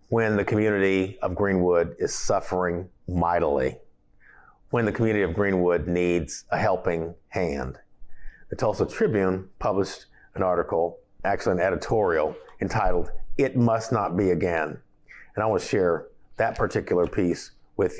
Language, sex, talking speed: English, male, 135 wpm